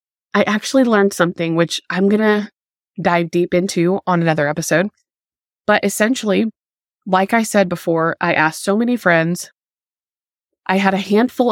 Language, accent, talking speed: English, American, 150 wpm